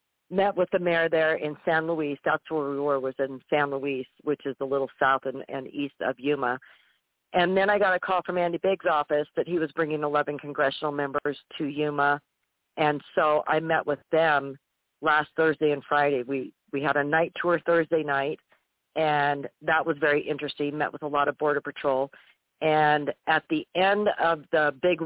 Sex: female